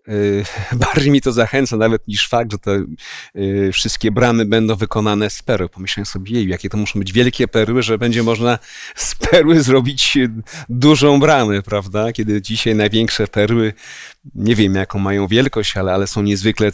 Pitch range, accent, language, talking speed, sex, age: 105-130 Hz, native, Polish, 160 wpm, male, 40-59